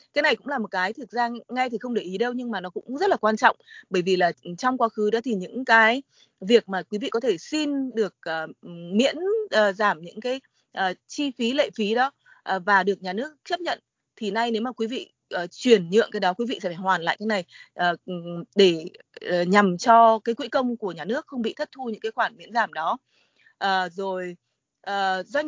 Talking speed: 220 wpm